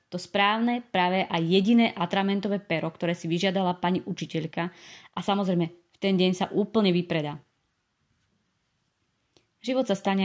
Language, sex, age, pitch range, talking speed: Slovak, female, 30-49, 165-190 Hz, 135 wpm